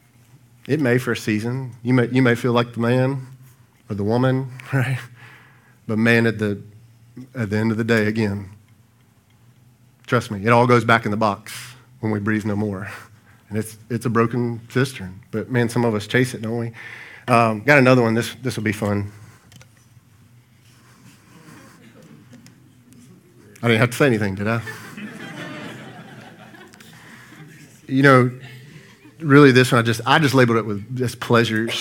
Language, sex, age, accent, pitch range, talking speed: English, male, 40-59, American, 110-125 Hz, 165 wpm